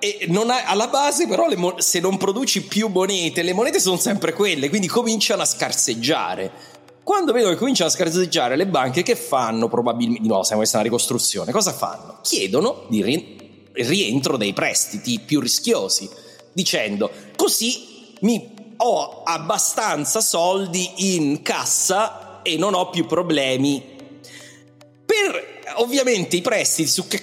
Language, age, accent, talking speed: Italian, 30-49, native, 145 wpm